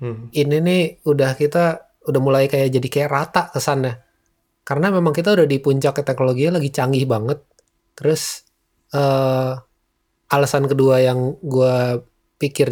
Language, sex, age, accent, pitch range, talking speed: Indonesian, male, 20-39, native, 125-145 Hz, 130 wpm